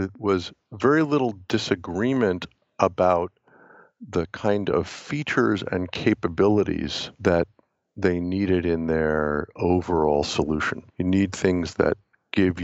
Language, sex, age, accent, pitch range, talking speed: English, male, 50-69, American, 80-95 Hz, 110 wpm